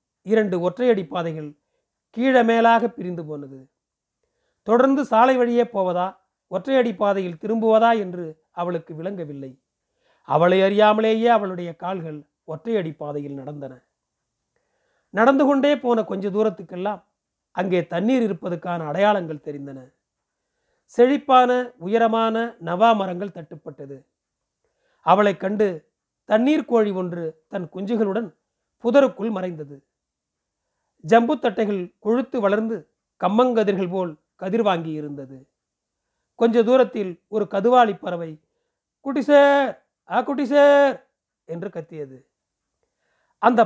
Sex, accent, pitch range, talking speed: male, native, 170-230 Hz, 90 wpm